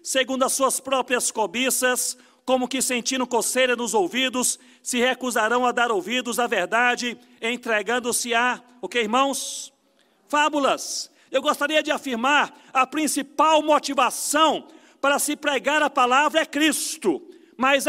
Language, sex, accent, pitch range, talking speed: Portuguese, male, Brazilian, 235-300 Hz, 130 wpm